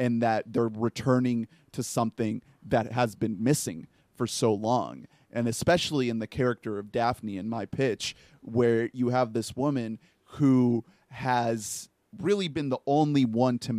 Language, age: English, 30-49